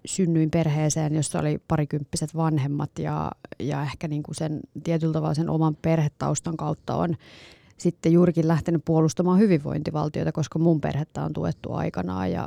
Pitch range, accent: 150-175 Hz, native